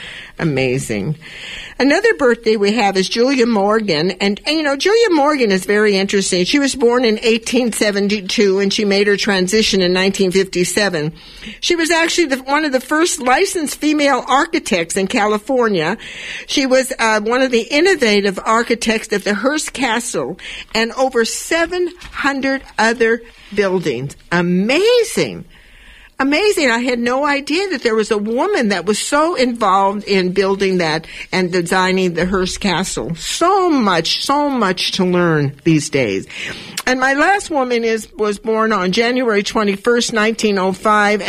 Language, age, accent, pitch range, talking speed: English, 50-69, American, 195-265 Hz, 145 wpm